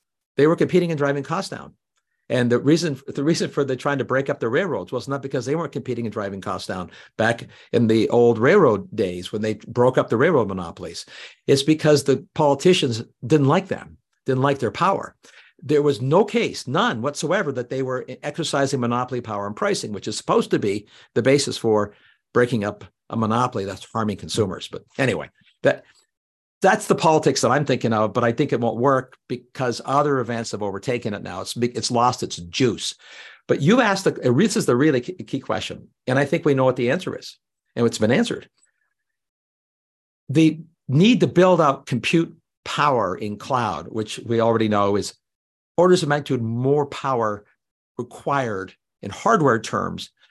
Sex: male